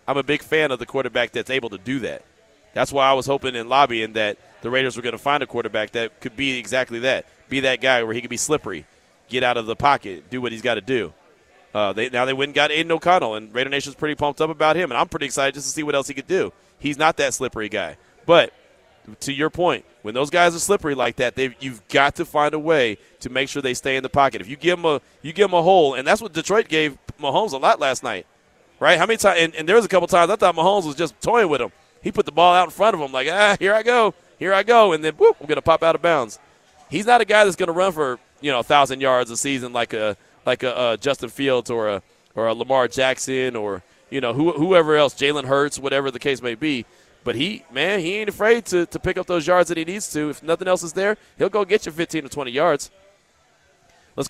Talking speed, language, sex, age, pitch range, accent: 270 wpm, English, male, 30-49, 130-175 Hz, American